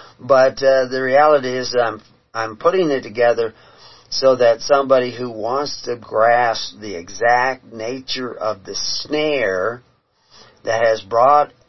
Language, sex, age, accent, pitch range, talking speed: English, male, 50-69, American, 125-155 Hz, 140 wpm